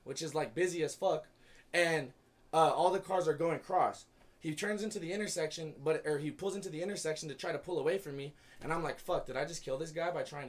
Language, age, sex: English, 20-39, male